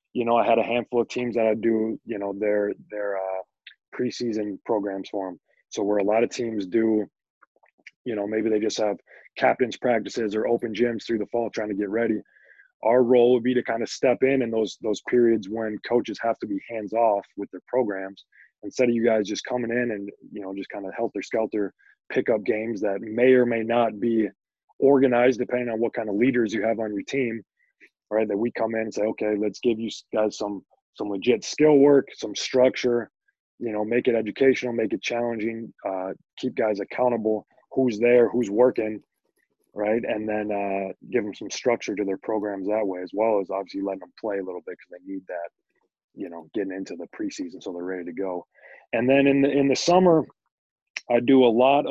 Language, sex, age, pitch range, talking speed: English, male, 20-39, 105-125 Hz, 215 wpm